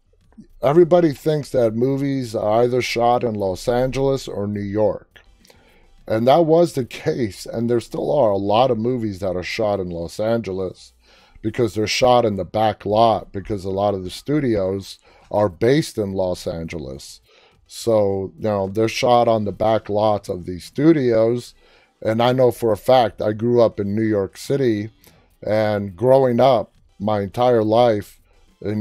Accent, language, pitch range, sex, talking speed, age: American, English, 100-120 Hz, male, 170 wpm, 30-49